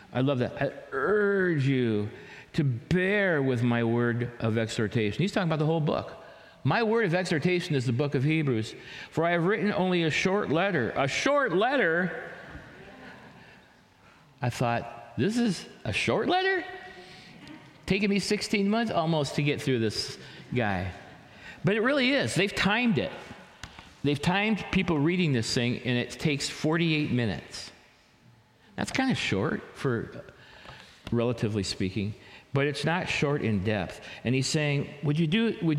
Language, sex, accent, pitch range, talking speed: English, male, American, 115-165 Hz, 160 wpm